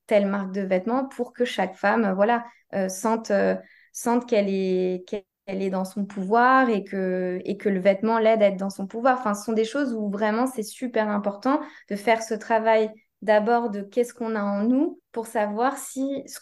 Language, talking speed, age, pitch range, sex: French, 210 wpm, 20-39, 205-240 Hz, female